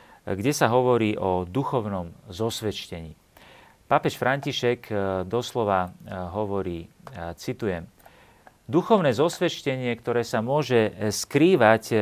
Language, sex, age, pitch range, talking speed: Slovak, male, 40-59, 105-140 Hz, 85 wpm